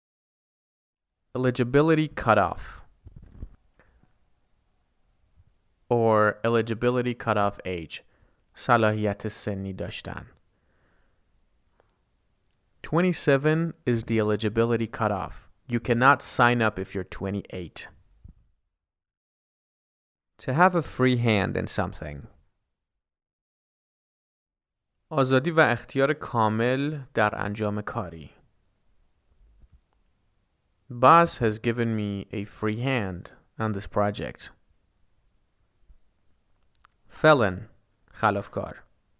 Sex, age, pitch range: male, 30-49, 95-125 Hz